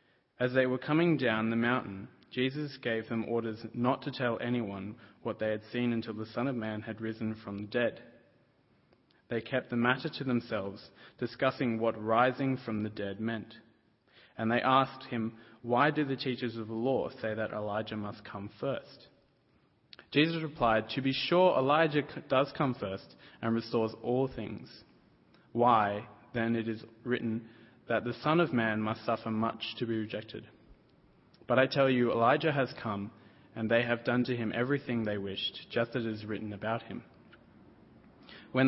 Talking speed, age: 175 wpm, 20-39